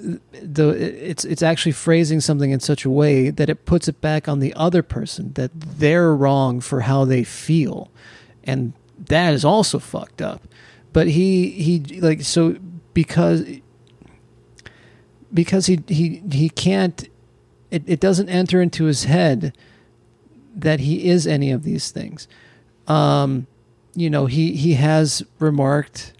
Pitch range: 130-155 Hz